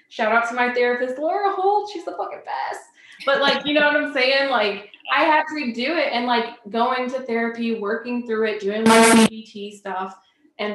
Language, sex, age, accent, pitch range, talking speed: English, female, 20-39, American, 190-240 Hz, 210 wpm